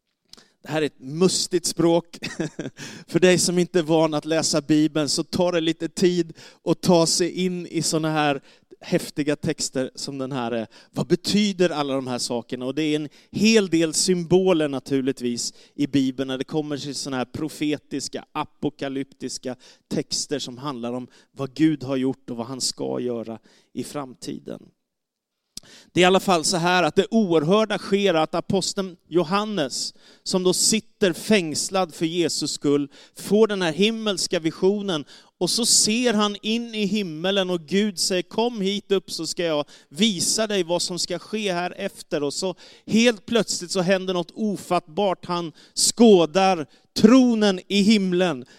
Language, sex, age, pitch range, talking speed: Swedish, male, 30-49, 150-195 Hz, 165 wpm